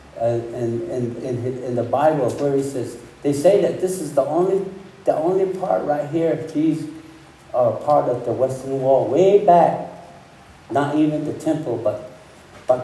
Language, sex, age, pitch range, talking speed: English, male, 60-79, 120-160 Hz, 180 wpm